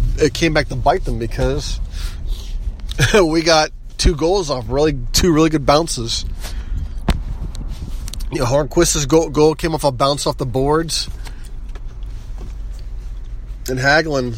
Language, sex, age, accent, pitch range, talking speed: English, male, 30-49, American, 110-145 Hz, 125 wpm